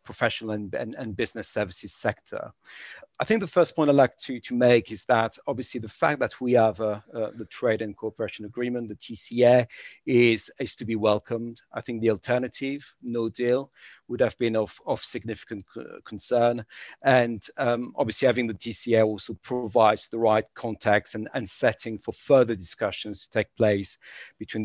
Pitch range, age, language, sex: 105-120 Hz, 40-59, English, male